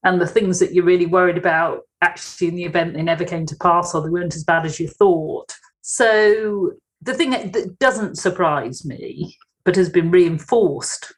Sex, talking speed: female, 195 wpm